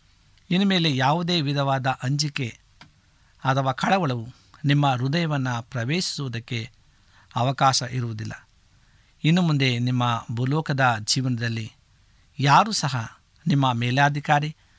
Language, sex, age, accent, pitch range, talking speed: Kannada, male, 60-79, native, 115-145 Hz, 85 wpm